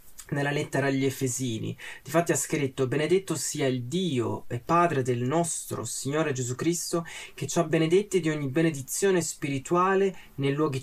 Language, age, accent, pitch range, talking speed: Italian, 20-39, native, 130-175 Hz, 155 wpm